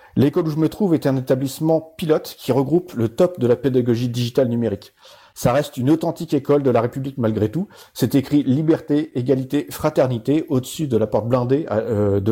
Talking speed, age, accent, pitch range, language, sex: 205 wpm, 40-59, French, 120-150 Hz, French, male